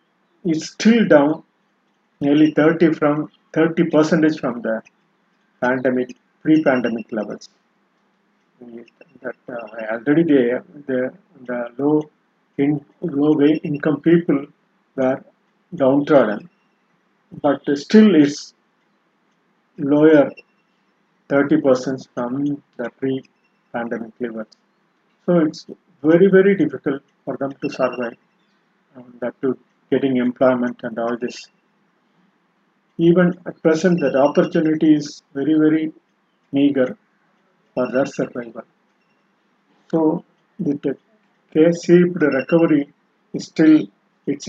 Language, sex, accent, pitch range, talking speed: Tamil, male, native, 130-175 Hz, 105 wpm